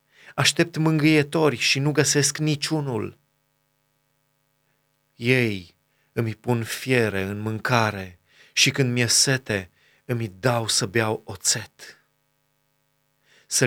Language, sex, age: Romanian, male, 30-49